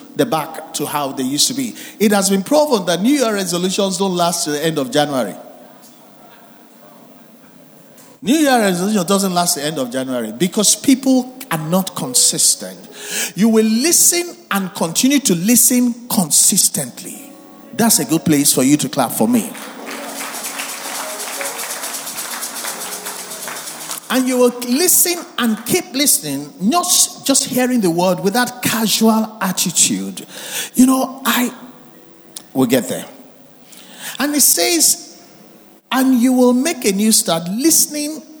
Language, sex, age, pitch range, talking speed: English, male, 50-69, 185-255 Hz, 140 wpm